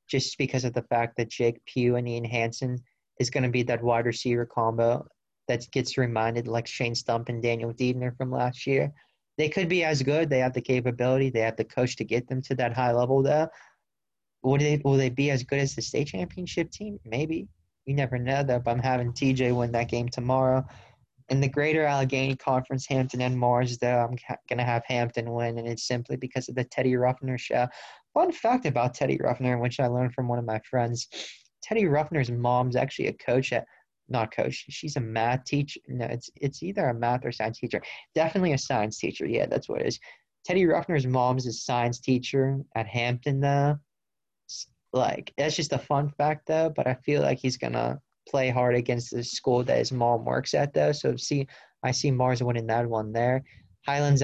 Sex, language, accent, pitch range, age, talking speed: male, English, American, 120-135 Hz, 20-39, 210 wpm